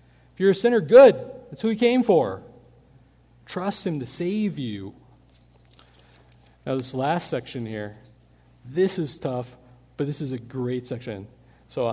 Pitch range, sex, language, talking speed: 120-165 Hz, male, English, 150 wpm